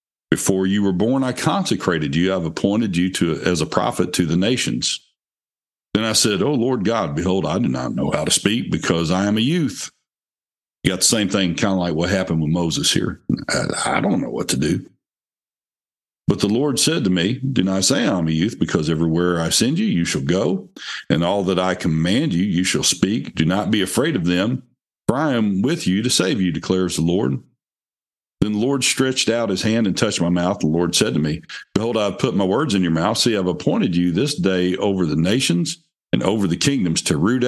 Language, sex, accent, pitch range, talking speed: English, male, American, 90-115 Hz, 230 wpm